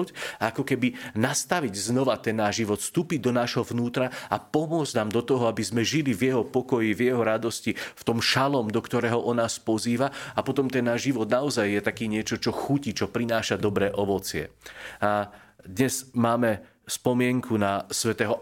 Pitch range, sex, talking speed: 105-125 Hz, male, 180 wpm